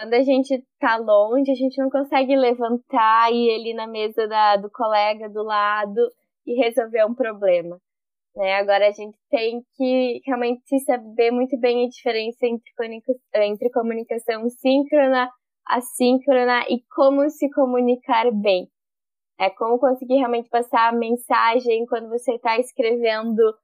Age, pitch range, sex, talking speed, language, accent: 10-29, 225-255 Hz, female, 145 wpm, Portuguese, Brazilian